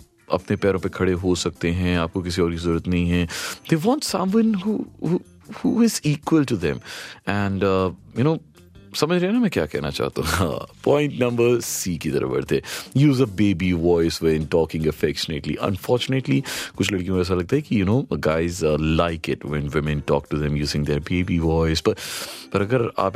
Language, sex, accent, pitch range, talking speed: Hindi, male, native, 85-130 Hz, 185 wpm